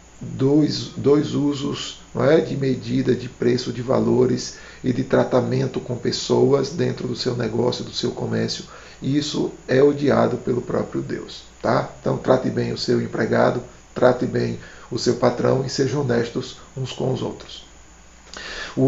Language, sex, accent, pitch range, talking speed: Portuguese, male, Brazilian, 115-145 Hz, 160 wpm